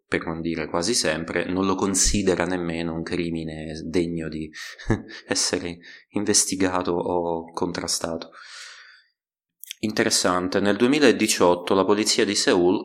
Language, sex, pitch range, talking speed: Italian, male, 85-105 Hz, 110 wpm